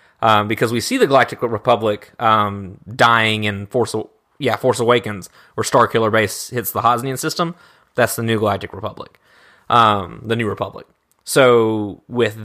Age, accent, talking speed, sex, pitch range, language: 20-39, American, 160 wpm, male, 110-145 Hz, English